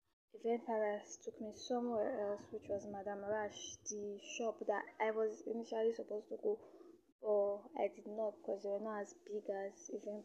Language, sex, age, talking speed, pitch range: English, female, 10-29, 180 wpm, 205-290 Hz